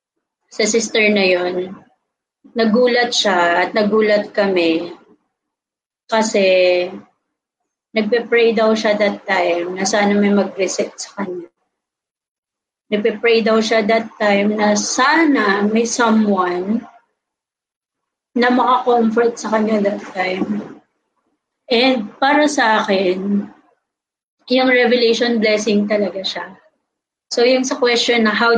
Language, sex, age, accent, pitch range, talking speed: Filipino, female, 20-39, native, 205-240 Hz, 105 wpm